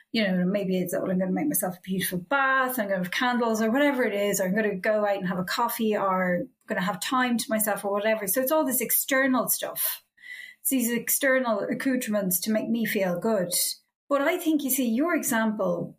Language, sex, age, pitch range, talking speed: English, female, 30-49, 200-260 Hz, 235 wpm